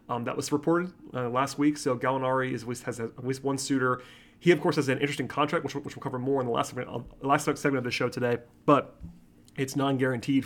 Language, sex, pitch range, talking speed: English, male, 130-150 Hz, 235 wpm